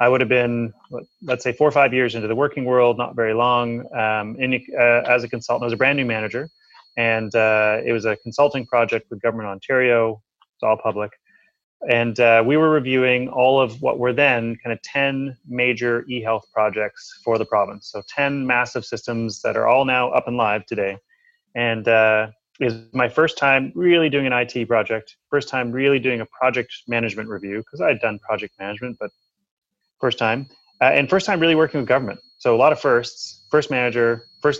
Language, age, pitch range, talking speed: English, 30-49, 115-135 Hz, 205 wpm